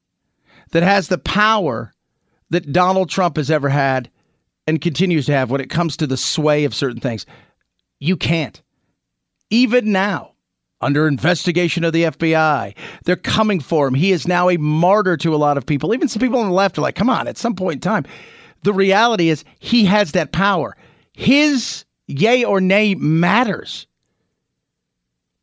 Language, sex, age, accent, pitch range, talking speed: English, male, 50-69, American, 150-210 Hz, 170 wpm